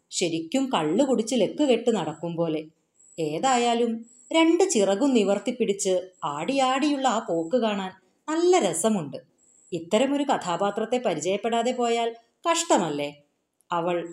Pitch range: 170-255 Hz